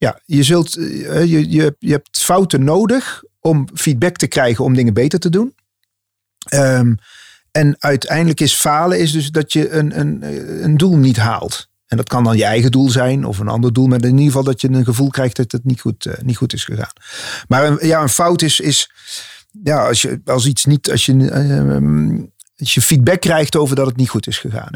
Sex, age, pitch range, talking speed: male, 40-59, 120-160 Hz, 215 wpm